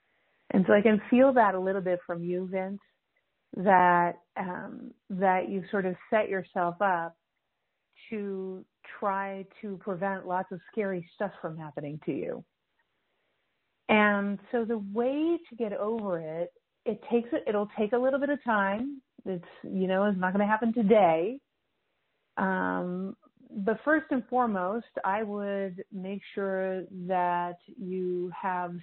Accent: American